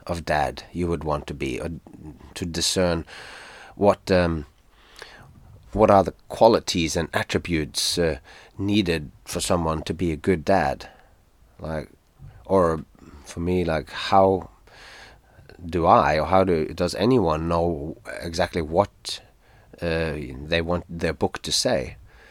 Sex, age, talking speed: male, 30-49, 135 wpm